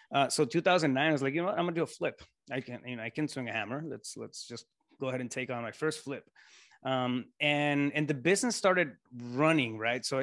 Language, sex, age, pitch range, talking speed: English, male, 20-39, 120-140 Hz, 250 wpm